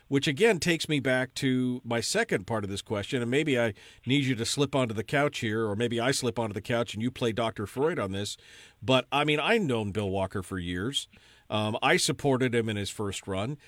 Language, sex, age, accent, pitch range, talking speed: English, male, 50-69, American, 115-155 Hz, 235 wpm